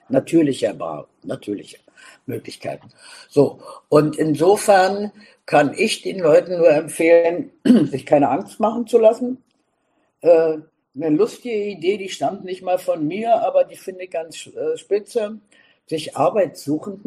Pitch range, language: 150-225 Hz, German